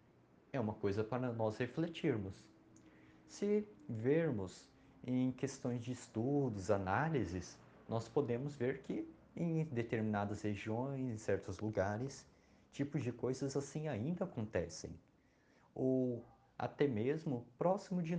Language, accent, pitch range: Portuguese, Brazilian, 115-155 Hz